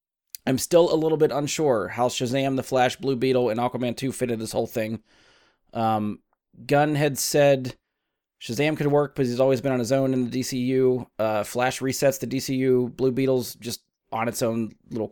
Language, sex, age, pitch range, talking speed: English, male, 20-39, 125-150 Hz, 190 wpm